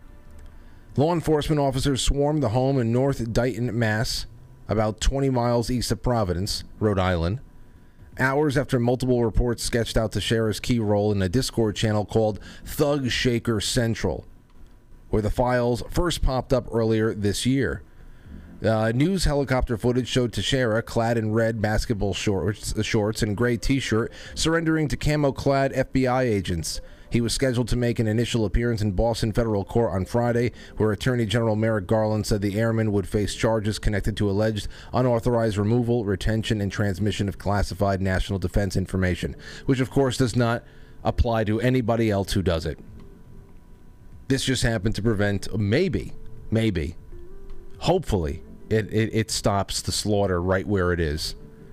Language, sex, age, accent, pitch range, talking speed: English, male, 30-49, American, 100-125 Hz, 155 wpm